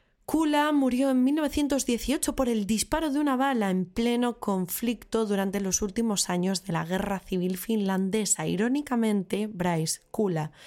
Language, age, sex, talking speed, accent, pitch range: Spanish, 20-39, female, 140 wpm, Spanish, 185-250 Hz